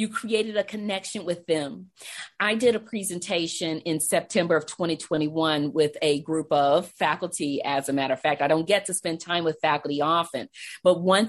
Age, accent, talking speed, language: 40-59, American, 185 wpm, English